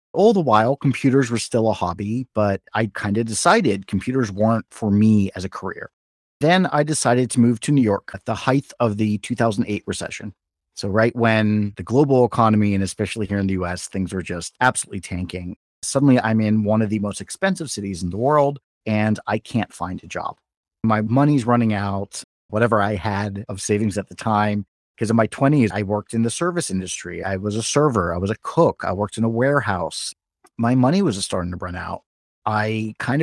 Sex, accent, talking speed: male, American, 205 wpm